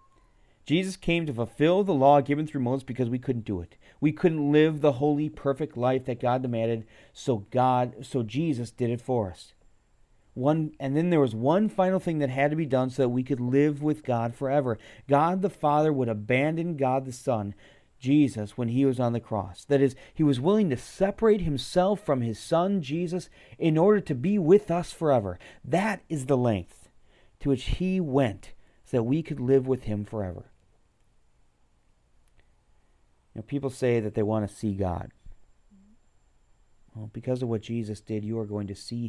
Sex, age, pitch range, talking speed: male, 40-59, 105-145 Hz, 185 wpm